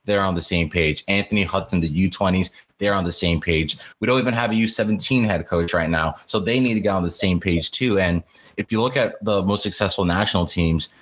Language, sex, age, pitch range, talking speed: English, male, 20-39, 85-105 Hz, 240 wpm